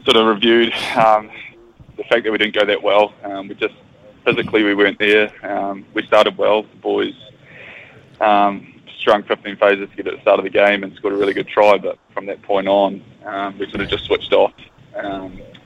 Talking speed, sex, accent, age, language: 220 wpm, male, Australian, 20-39, English